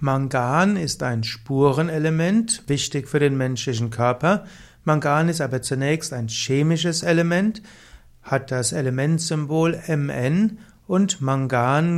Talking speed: 110 wpm